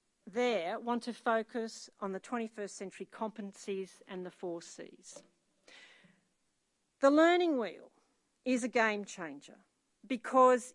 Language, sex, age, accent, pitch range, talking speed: English, female, 50-69, Australian, 190-250 Hz, 115 wpm